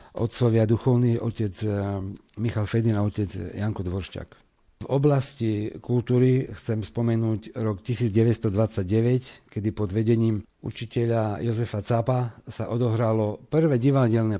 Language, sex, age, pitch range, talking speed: Slovak, male, 50-69, 105-120 Hz, 110 wpm